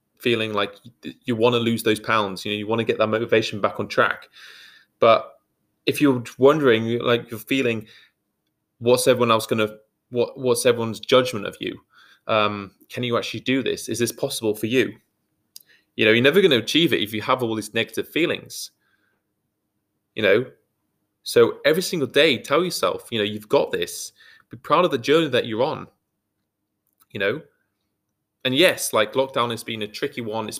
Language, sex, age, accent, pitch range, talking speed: English, male, 20-39, British, 105-130 Hz, 190 wpm